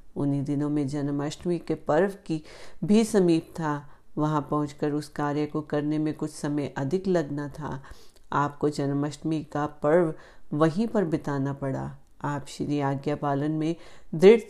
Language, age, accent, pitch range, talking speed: Hindi, 40-59, native, 150-180 Hz, 140 wpm